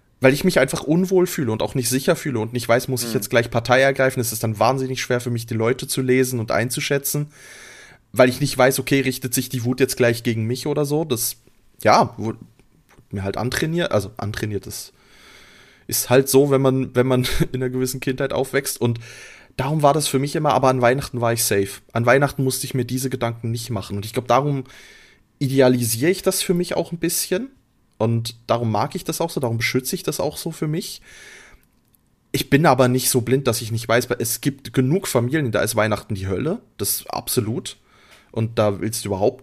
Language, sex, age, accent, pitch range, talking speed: German, male, 20-39, German, 115-140 Hz, 225 wpm